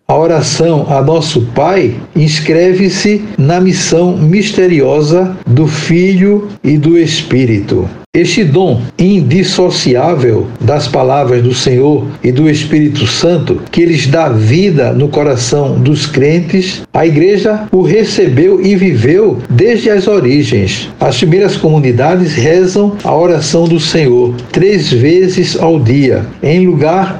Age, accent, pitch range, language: 60-79, Brazilian, 140-185 Hz, Portuguese